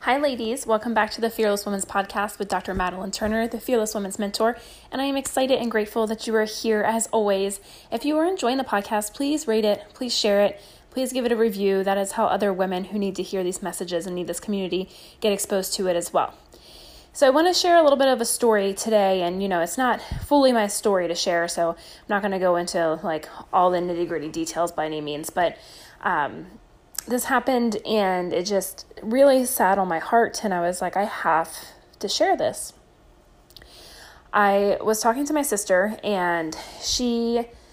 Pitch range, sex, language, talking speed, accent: 190-240 Hz, female, English, 215 wpm, American